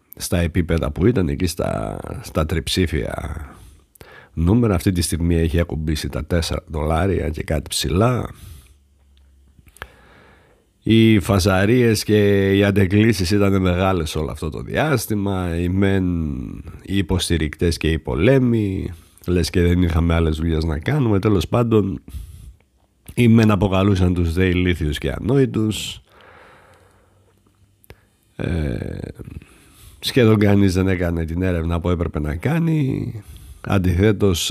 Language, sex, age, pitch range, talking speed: Greek, male, 60-79, 80-100 Hz, 115 wpm